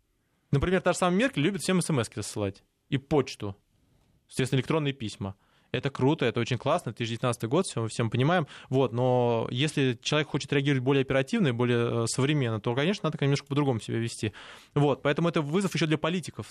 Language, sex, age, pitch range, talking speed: Russian, male, 20-39, 125-160 Hz, 180 wpm